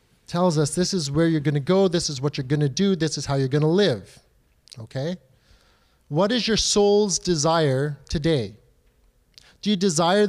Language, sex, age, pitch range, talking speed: English, male, 30-49, 130-195 Hz, 190 wpm